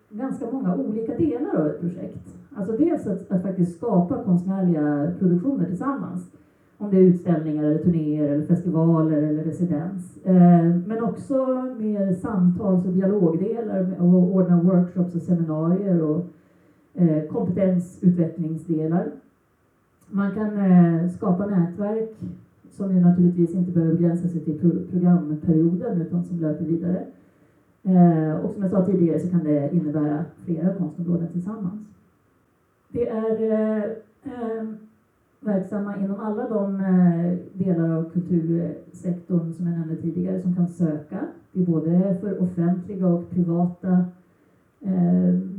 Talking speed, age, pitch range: 120 wpm, 30-49, 170-195 Hz